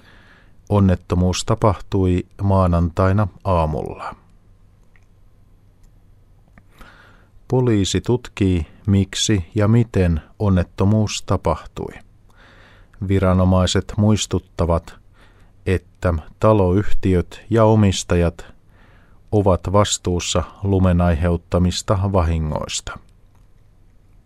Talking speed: 55 wpm